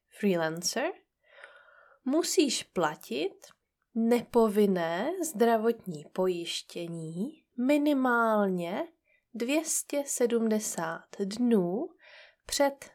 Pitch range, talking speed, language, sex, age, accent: 180-270 Hz, 45 wpm, Czech, female, 20-39, native